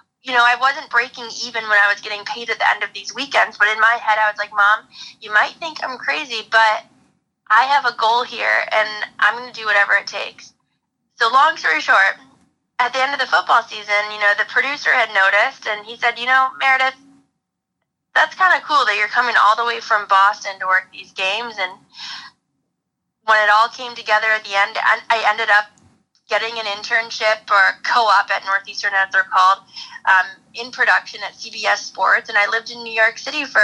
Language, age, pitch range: English, 20-39, 205-235 Hz